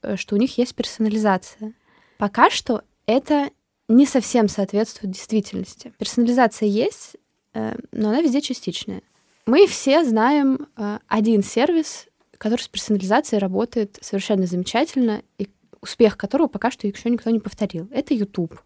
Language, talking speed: Russian, 130 wpm